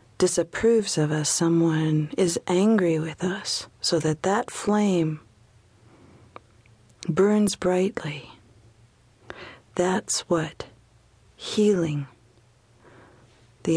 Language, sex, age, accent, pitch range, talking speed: English, female, 40-59, American, 120-185 Hz, 80 wpm